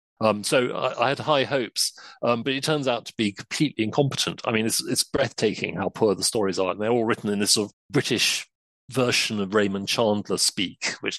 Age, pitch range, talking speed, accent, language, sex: 40-59, 105-125 Hz, 220 wpm, British, English, male